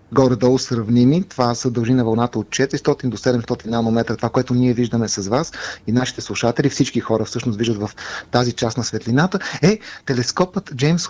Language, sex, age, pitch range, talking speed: Bulgarian, male, 30-49, 125-165 Hz, 175 wpm